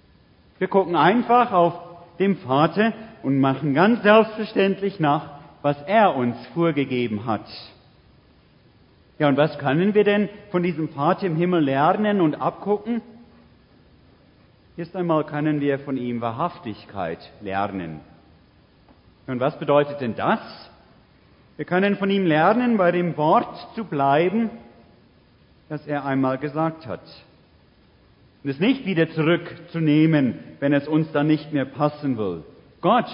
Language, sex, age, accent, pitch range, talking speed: German, male, 40-59, German, 135-180 Hz, 130 wpm